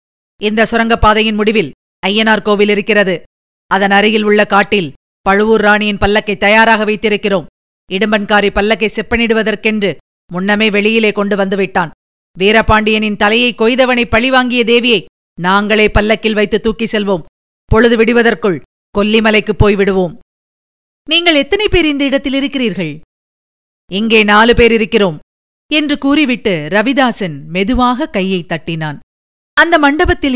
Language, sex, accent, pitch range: Tamil, female, native, 200-230 Hz